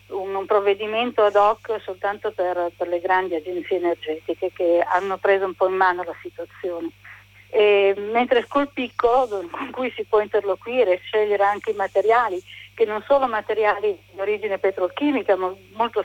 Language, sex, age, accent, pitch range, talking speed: Italian, female, 40-59, native, 185-250 Hz, 160 wpm